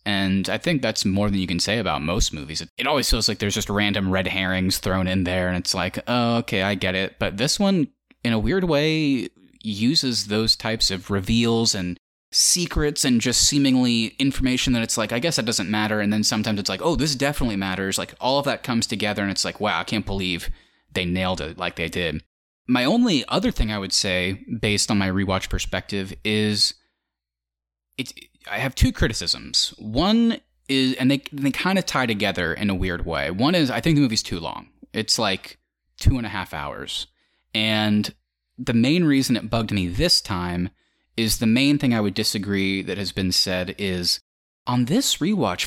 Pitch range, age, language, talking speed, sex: 95-130 Hz, 20-39, English, 205 wpm, male